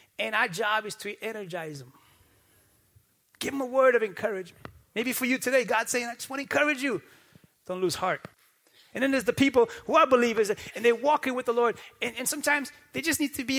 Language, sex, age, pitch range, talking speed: English, male, 30-49, 200-275 Hz, 220 wpm